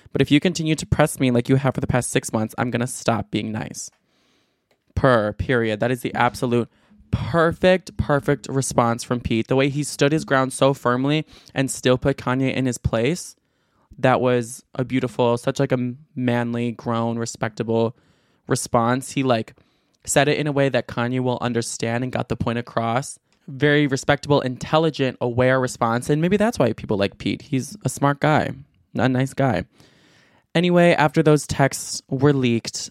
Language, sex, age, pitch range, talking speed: English, male, 20-39, 120-145 Hz, 180 wpm